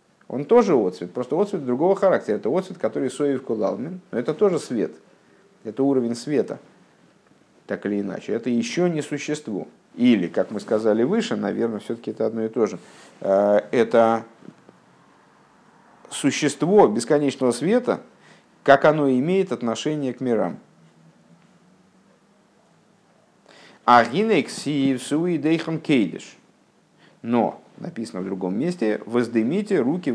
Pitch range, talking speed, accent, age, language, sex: 110-170 Hz, 110 wpm, native, 50-69, Russian, male